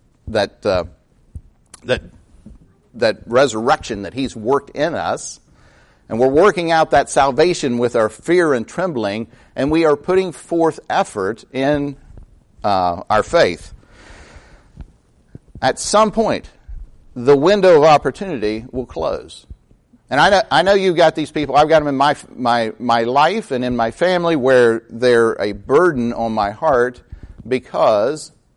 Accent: American